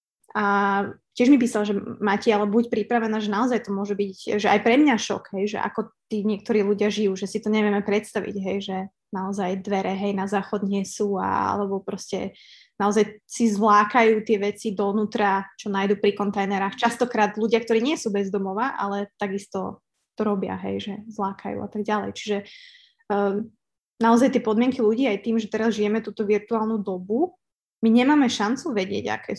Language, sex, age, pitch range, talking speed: Slovak, female, 20-39, 205-235 Hz, 180 wpm